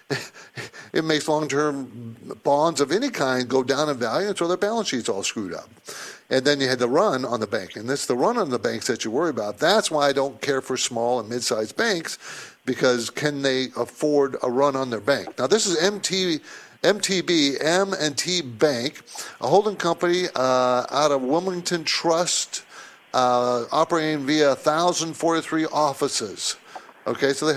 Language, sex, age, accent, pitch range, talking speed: English, male, 50-69, American, 130-165 Hz, 170 wpm